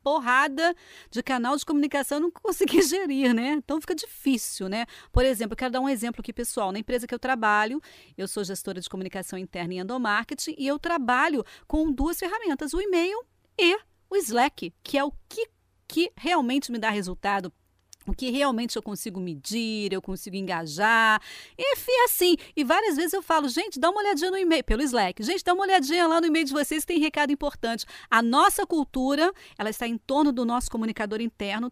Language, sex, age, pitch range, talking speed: Portuguese, female, 40-59, 220-310 Hz, 195 wpm